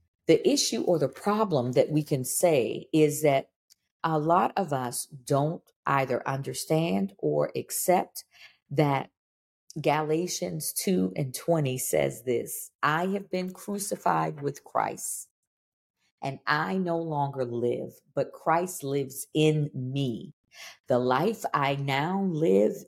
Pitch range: 130-180 Hz